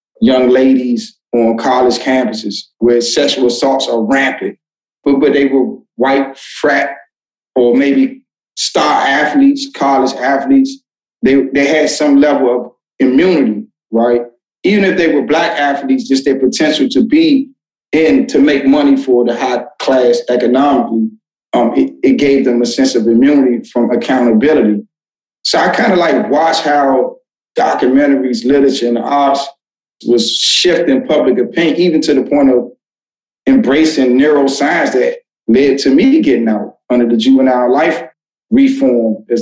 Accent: American